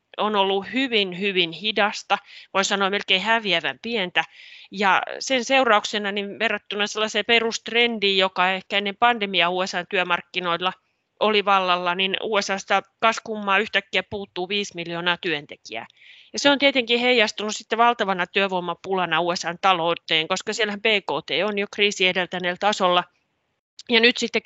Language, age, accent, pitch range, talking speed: Finnish, 30-49, native, 175-210 Hz, 135 wpm